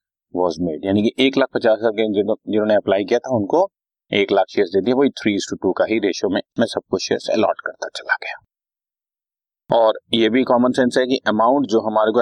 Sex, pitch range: male, 115-135 Hz